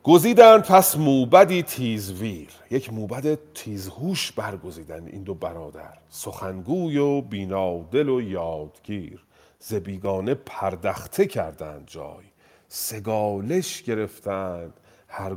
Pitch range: 110-170 Hz